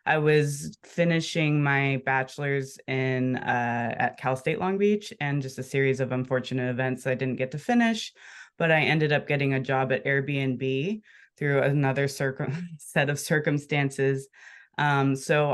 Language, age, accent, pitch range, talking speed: English, 20-39, American, 130-160 Hz, 150 wpm